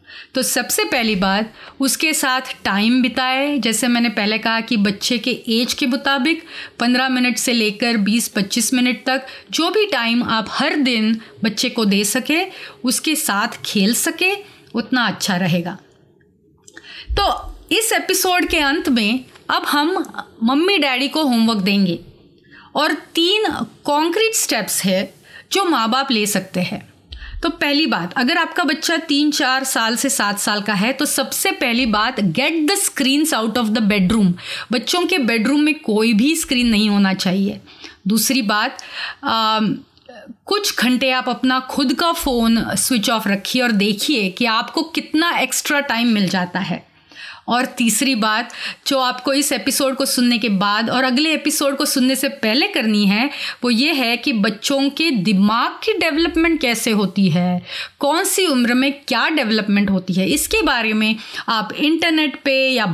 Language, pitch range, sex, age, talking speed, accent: Hindi, 220-290 Hz, female, 30-49, 165 wpm, native